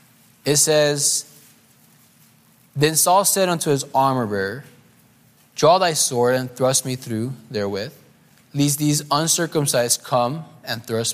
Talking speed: 120 wpm